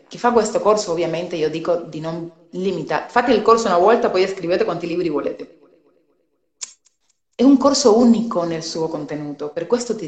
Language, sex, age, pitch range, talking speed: Italian, female, 30-49, 175-235 Hz, 180 wpm